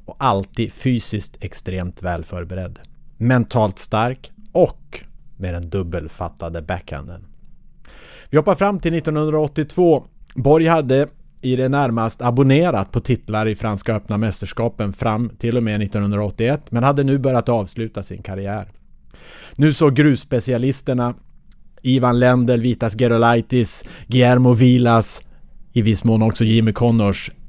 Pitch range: 100-135 Hz